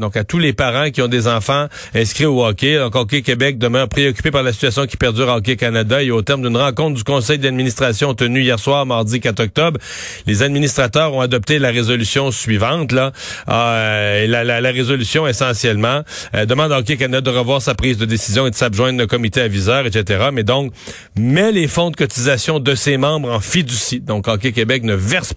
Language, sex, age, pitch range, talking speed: French, male, 40-59, 115-140 Hz, 210 wpm